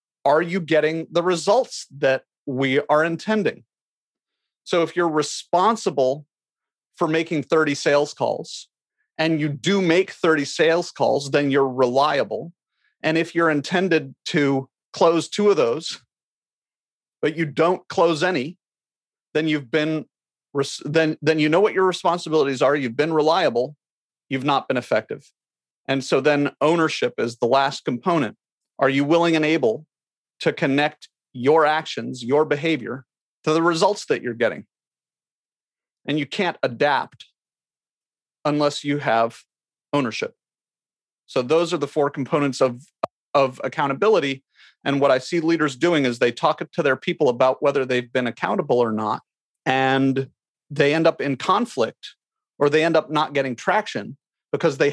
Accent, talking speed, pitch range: American, 150 wpm, 135-165 Hz